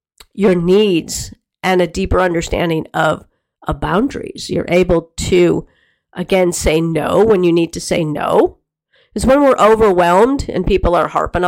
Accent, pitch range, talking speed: American, 170-200 Hz, 150 wpm